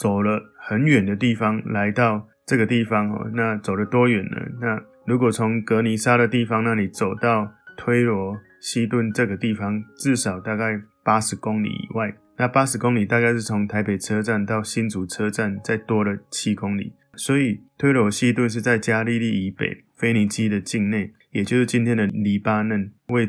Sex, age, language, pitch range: male, 20-39, Chinese, 105-120 Hz